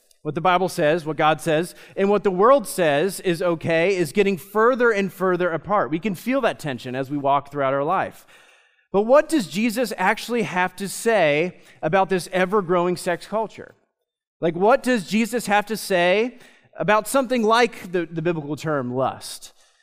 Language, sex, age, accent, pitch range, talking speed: English, male, 30-49, American, 165-215 Hz, 180 wpm